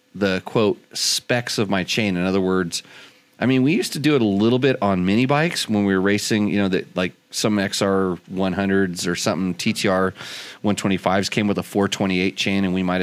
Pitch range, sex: 95-115 Hz, male